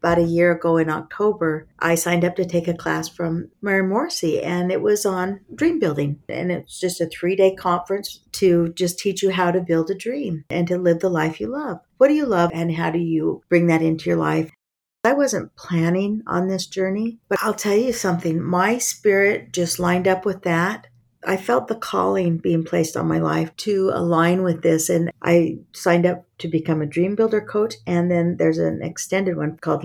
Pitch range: 165-205 Hz